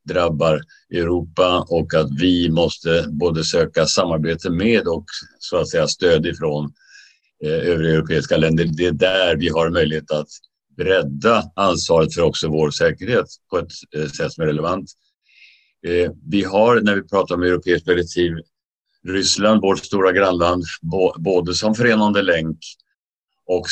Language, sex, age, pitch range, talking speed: English, male, 60-79, 75-90 Hz, 150 wpm